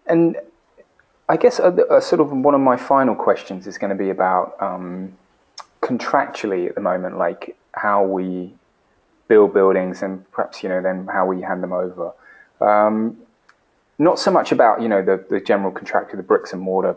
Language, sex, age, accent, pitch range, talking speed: English, male, 20-39, British, 95-140 Hz, 180 wpm